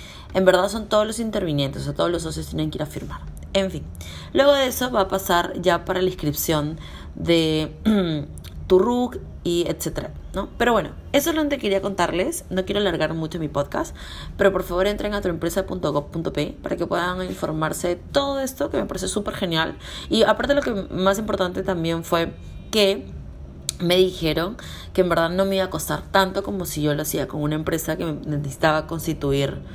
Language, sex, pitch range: Spanish, female, 155-195 Hz